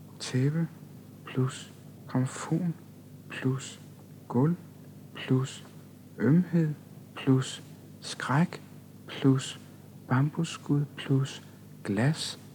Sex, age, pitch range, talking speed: male, 60-79, 130-155 Hz, 60 wpm